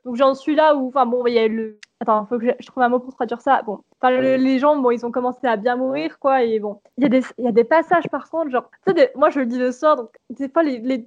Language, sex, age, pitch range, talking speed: French, female, 10-29, 230-280 Hz, 335 wpm